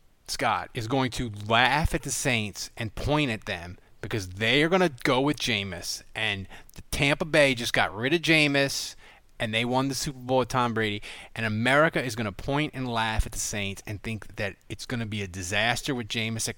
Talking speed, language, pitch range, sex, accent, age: 220 wpm, English, 110-150 Hz, male, American, 30-49